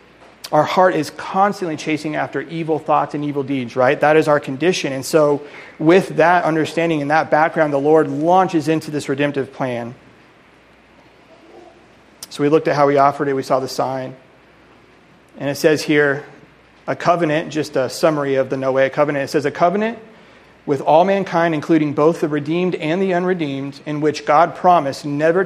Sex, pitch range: male, 145-170 Hz